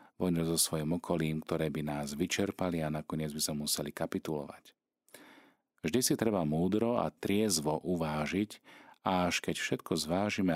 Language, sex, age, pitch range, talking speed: Slovak, male, 40-59, 75-90 Hz, 150 wpm